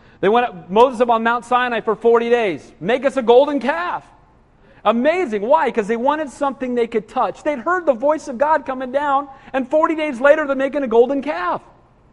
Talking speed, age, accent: 210 wpm, 40-59, American